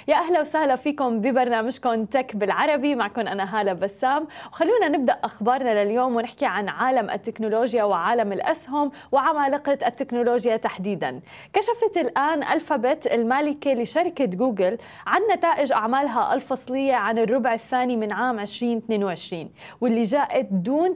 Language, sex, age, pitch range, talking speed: Arabic, female, 20-39, 230-290 Hz, 125 wpm